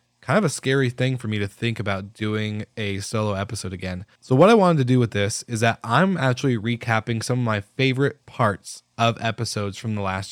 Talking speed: 220 wpm